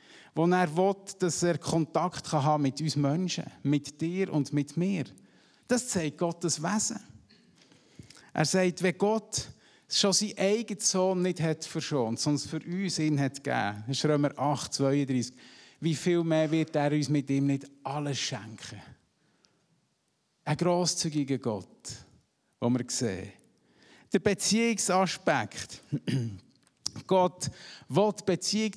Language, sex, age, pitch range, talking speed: German, male, 50-69, 140-175 Hz, 130 wpm